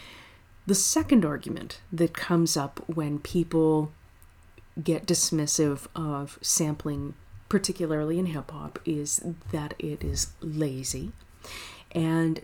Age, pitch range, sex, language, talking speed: 30-49, 150-175 Hz, female, English, 105 wpm